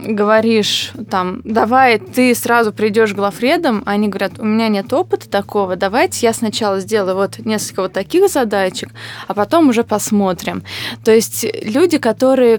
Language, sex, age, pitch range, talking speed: Russian, female, 20-39, 200-230 Hz, 150 wpm